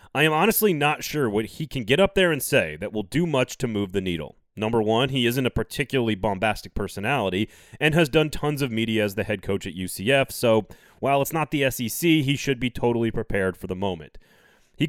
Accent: American